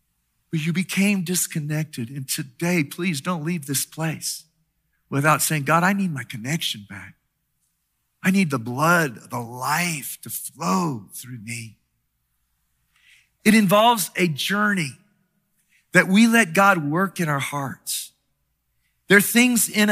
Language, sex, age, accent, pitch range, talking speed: English, male, 50-69, American, 140-185 Hz, 135 wpm